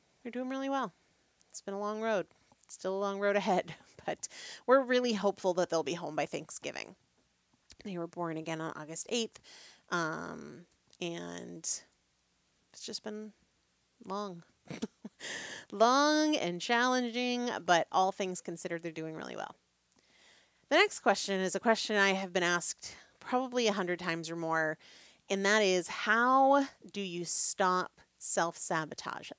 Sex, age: female, 30-49